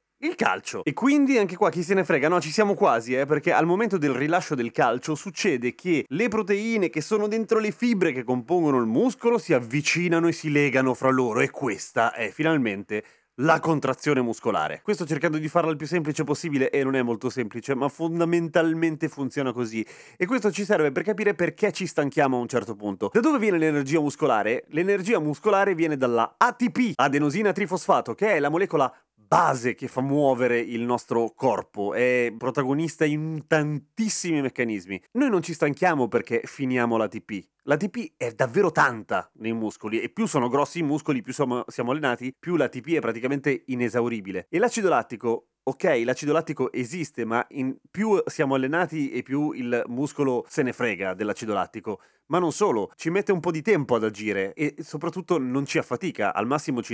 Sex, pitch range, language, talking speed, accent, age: male, 125-180 Hz, Italian, 185 wpm, native, 30-49